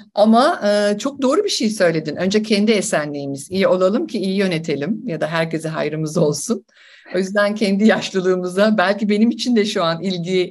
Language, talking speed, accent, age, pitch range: English, 175 wpm, Turkish, 50-69, 180-230 Hz